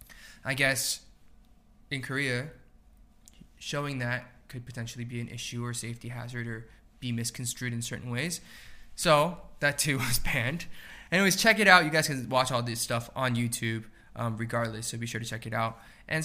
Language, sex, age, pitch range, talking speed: English, male, 20-39, 120-145 Hz, 175 wpm